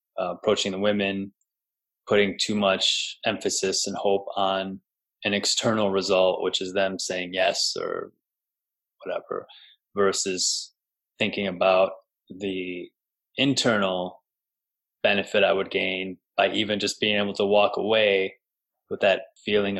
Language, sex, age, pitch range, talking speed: English, male, 20-39, 95-115 Hz, 125 wpm